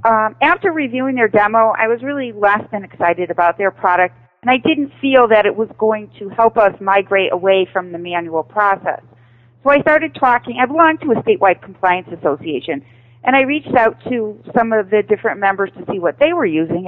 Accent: American